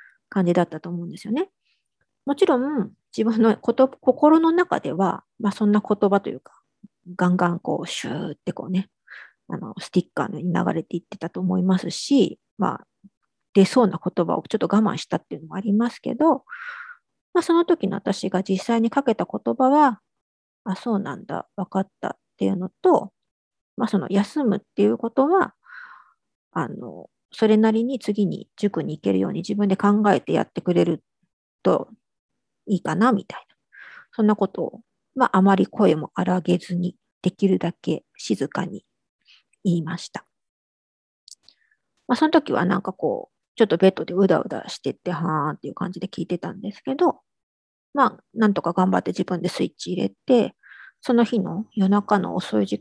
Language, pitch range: Japanese, 185-250 Hz